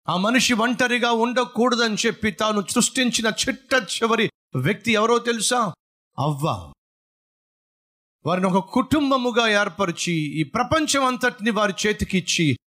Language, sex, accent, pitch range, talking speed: Telugu, male, native, 170-250 Hz, 105 wpm